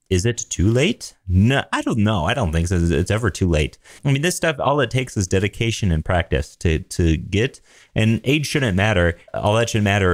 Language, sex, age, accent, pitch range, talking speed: English, male, 30-49, American, 85-110 Hz, 225 wpm